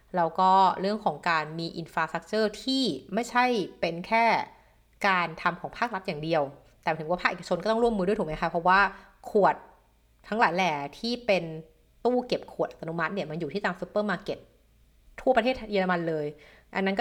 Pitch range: 170-220 Hz